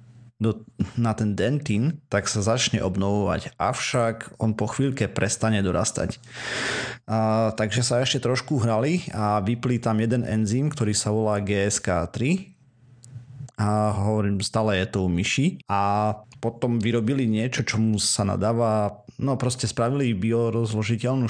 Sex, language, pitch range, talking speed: male, Slovak, 105-120 Hz, 130 wpm